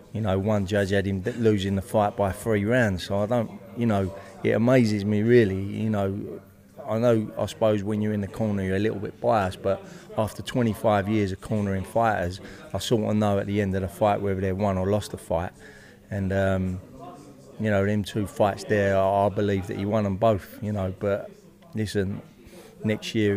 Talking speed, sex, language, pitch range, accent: 210 wpm, male, English, 95-110 Hz, British